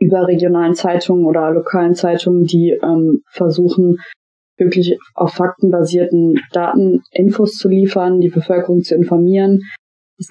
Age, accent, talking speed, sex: 20-39, German, 120 wpm, female